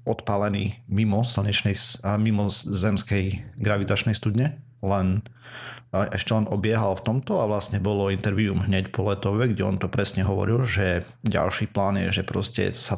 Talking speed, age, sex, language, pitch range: 150 wpm, 40-59, male, Slovak, 100-120 Hz